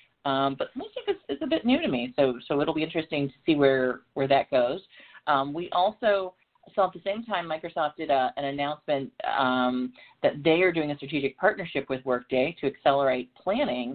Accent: American